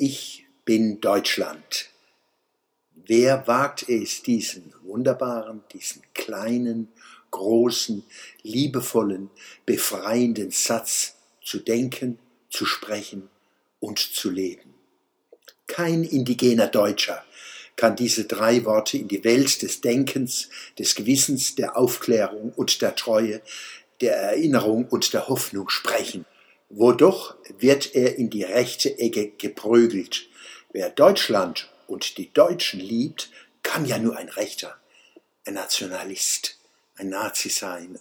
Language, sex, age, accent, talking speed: German, male, 60-79, German, 110 wpm